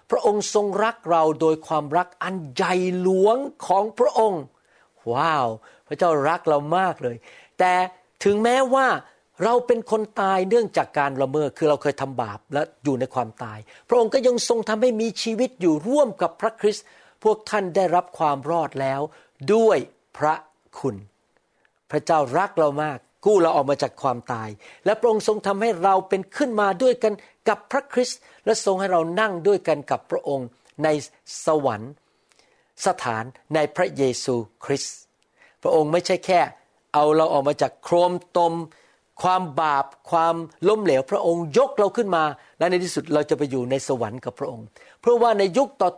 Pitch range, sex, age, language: 140-200 Hz, male, 60-79, Thai